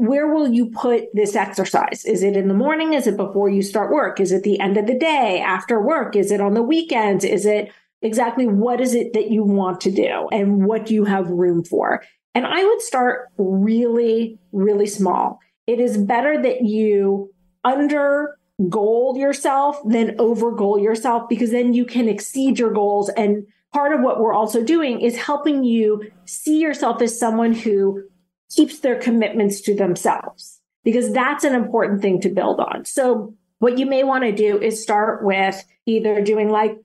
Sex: female